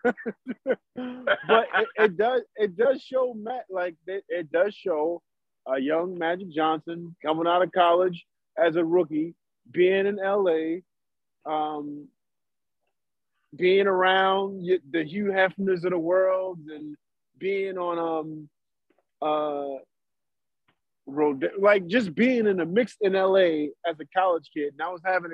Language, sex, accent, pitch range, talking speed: English, male, American, 170-215 Hz, 135 wpm